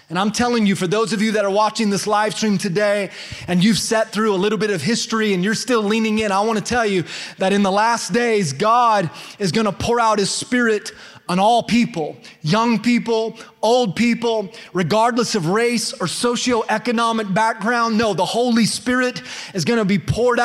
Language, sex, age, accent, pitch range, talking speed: English, male, 30-49, American, 200-235 Hz, 200 wpm